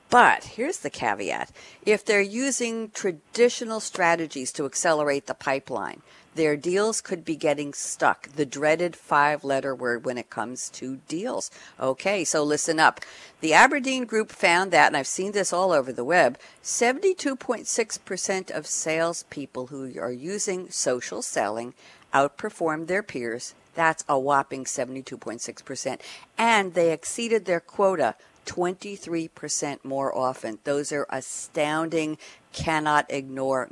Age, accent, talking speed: 60-79, American, 130 wpm